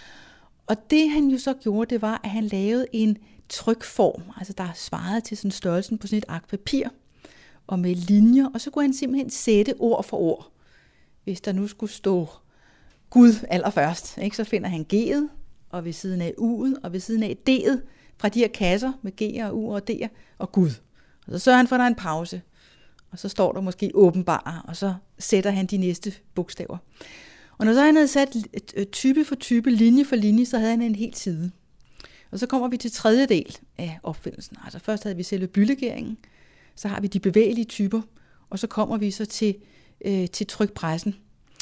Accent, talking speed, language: native, 200 wpm, Danish